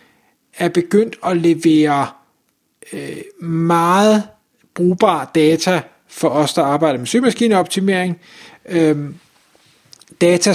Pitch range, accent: 150-185 Hz, native